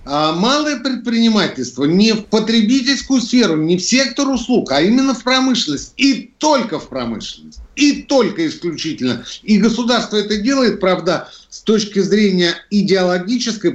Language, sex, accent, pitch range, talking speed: Russian, male, native, 140-210 Hz, 130 wpm